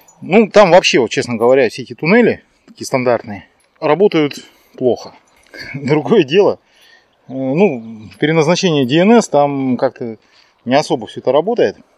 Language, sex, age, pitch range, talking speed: Russian, male, 30-49, 120-170 Hz, 130 wpm